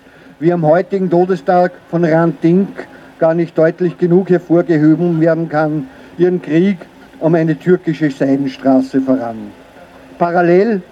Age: 50-69